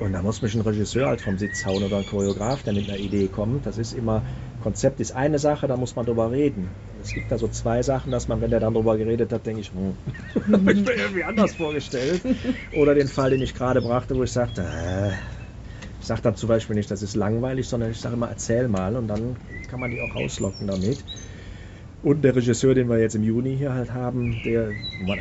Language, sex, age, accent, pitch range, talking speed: German, male, 40-59, German, 105-120 Hz, 235 wpm